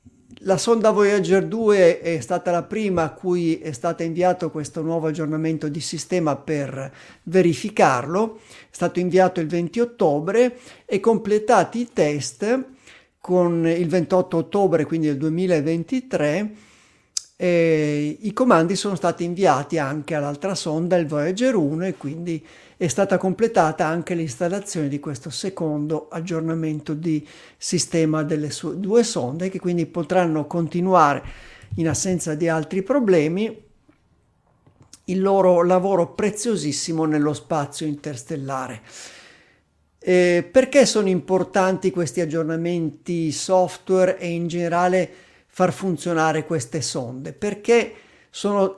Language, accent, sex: Italian, native, male